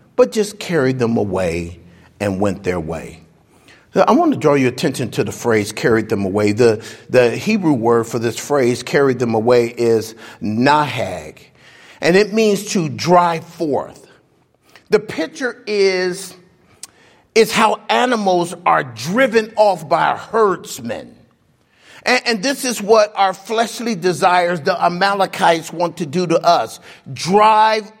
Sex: male